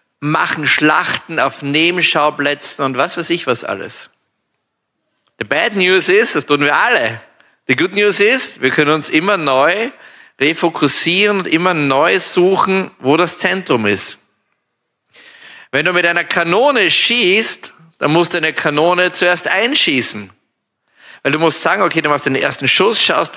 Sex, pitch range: male, 150-195 Hz